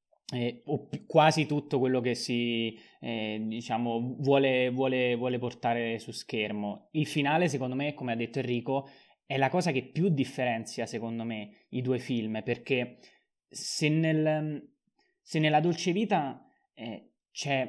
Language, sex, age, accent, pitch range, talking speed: Italian, male, 20-39, native, 125-155 Hz, 140 wpm